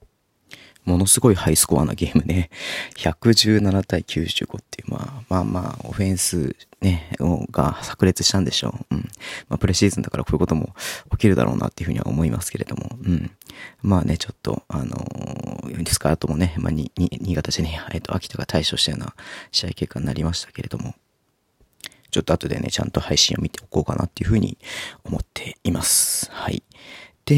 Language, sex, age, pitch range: Japanese, male, 30-49, 80-105 Hz